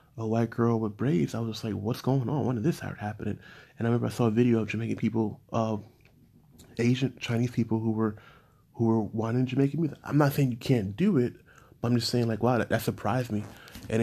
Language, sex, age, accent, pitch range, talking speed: English, male, 20-39, American, 115-130 Hz, 240 wpm